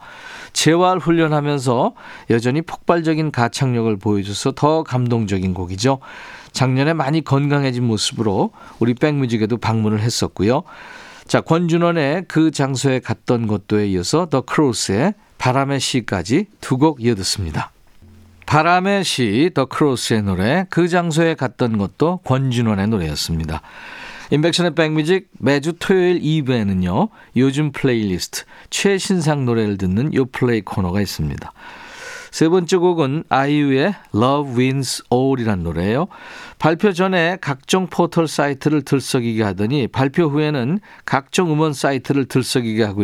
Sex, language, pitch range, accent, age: male, Korean, 110-160 Hz, native, 40-59